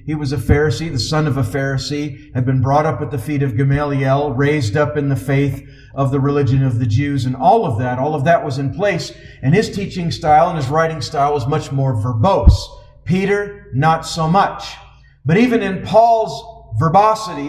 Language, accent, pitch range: English, American, 140-190 Hz